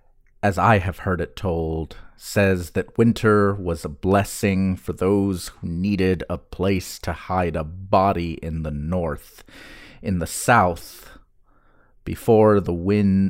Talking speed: 140 wpm